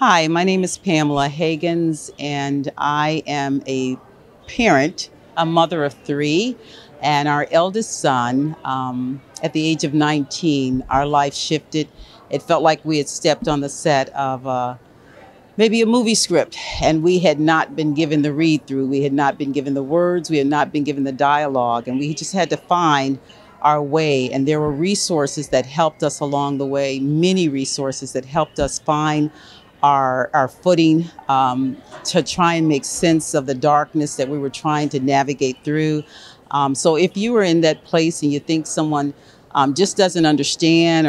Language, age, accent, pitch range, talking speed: English, 50-69, American, 140-165 Hz, 180 wpm